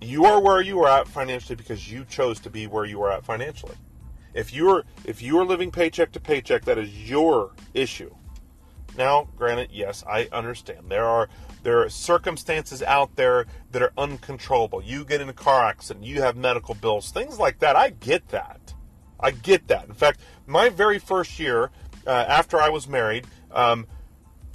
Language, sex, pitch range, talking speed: English, male, 115-185 Hz, 190 wpm